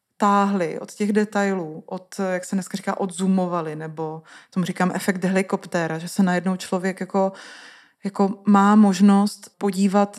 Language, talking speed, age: Czech, 140 wpm, 20-39